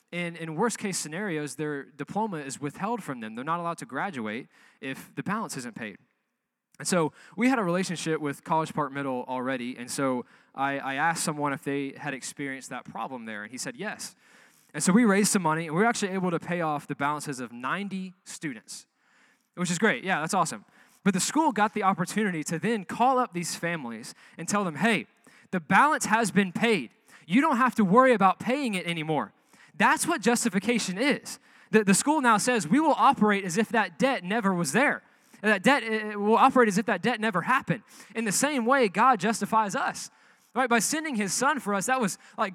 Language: English